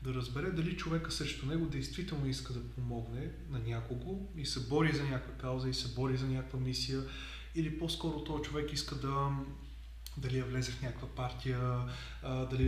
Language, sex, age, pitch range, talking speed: Bulgarian, male, 20-39, 125-150 Hz, 175 wpm